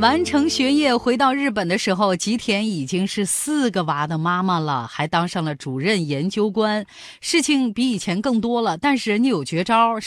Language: Chinese